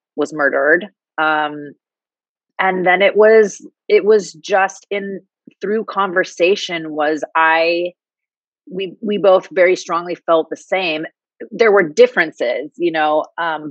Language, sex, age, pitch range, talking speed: English, female, 30-49, 150-195 Hz, 125 wpm